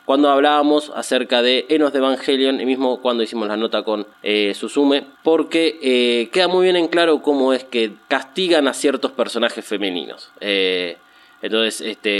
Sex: male